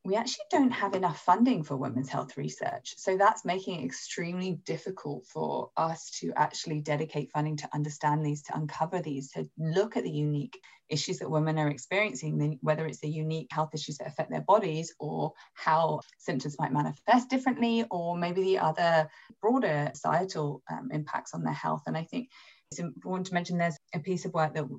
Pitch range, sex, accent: 150-180 Hz, female, British